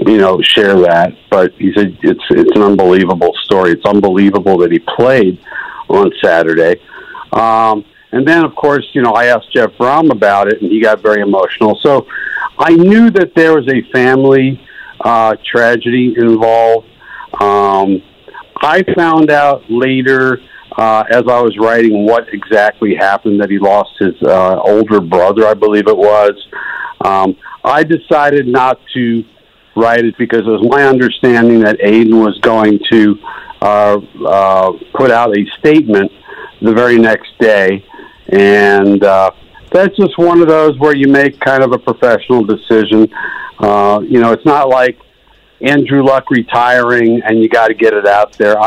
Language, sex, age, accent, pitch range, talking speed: English, male, 50-69, American, 100-125 Hz, 160 wpm